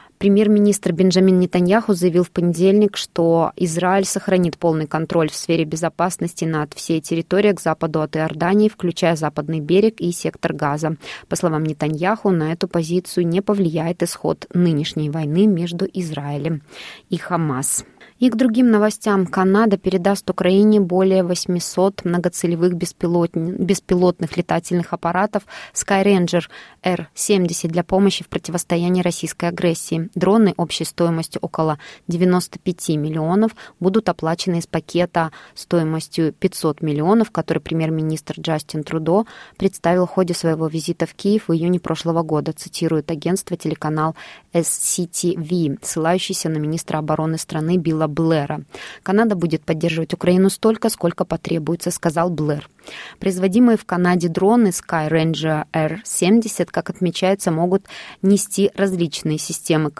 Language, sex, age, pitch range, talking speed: Russian, female, 20-39, 160-190 Hz, 125 wpm